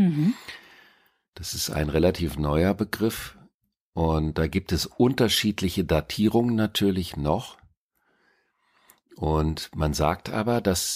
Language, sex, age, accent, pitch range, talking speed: German, male, 50-69, German, 75-95 Hz, 105 wpm